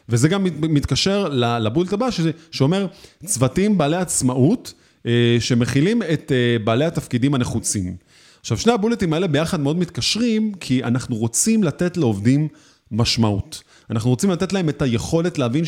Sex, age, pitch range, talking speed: male, 30-49, 115-165 Hz, 135 wpm